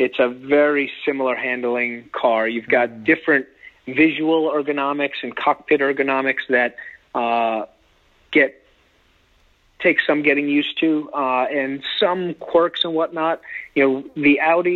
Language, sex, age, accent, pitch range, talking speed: English, male, 40-59, American, 120-140 Hz, 130 wpm